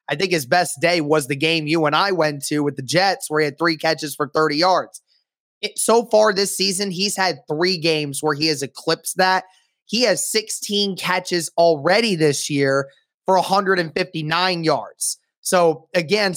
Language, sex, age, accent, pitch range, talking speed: English, male, 20-39, American, 155-185 Hz, 180 wpm